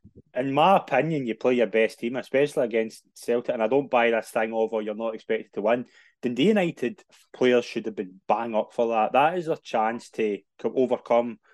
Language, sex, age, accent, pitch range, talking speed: English, male, 20-39, British, 110-125 Hz, 210 wpm